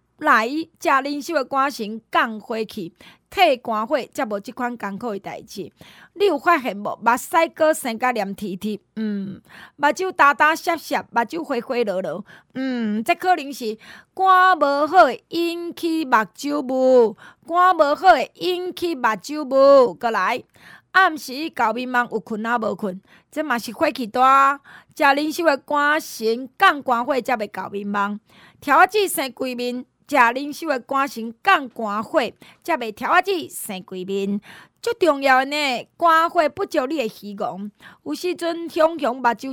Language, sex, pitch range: Chinese, female, 225-315 Hz